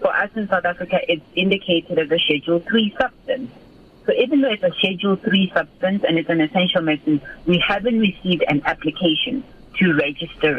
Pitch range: 160-200 Hz